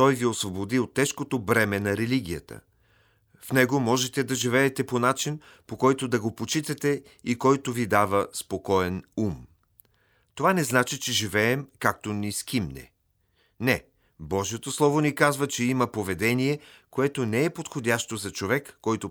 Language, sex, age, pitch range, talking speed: Bulgarian, male, 40-59, 100-130 Hz, 155 wpm